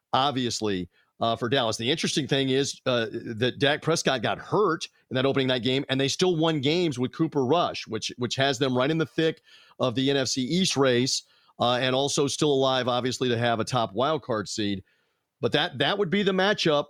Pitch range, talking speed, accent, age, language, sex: 130-165 Hz, 215 wpm, American, 40-59, English, male